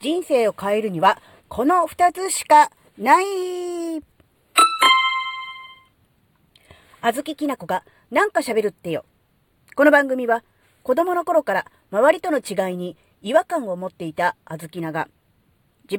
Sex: female